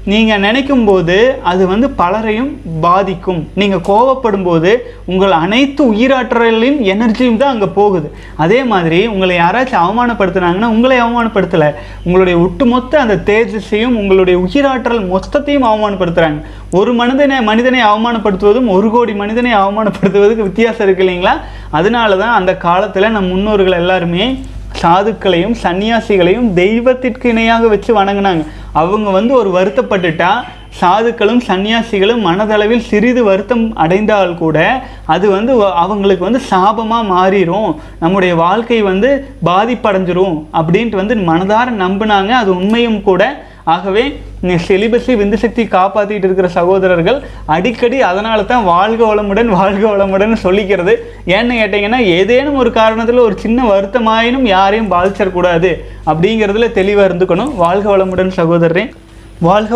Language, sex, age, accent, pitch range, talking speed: Tamil, male, 30-49, native, 185-230 Hz, 115 wpm